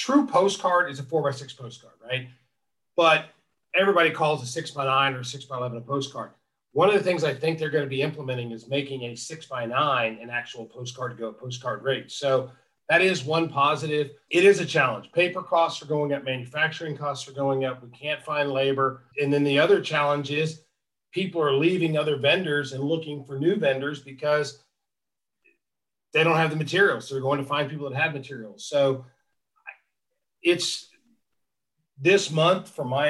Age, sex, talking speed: 40-59, male, 190 wpm